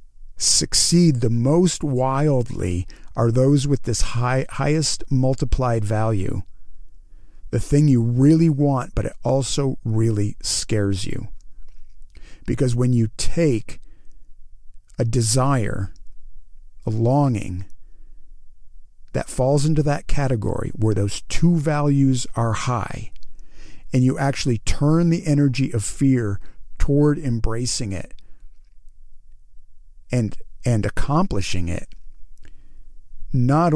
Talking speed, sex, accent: 105 wpm, male, American